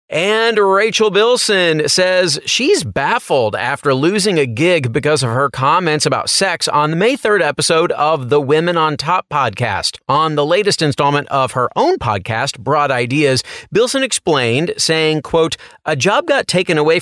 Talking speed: 160 wpm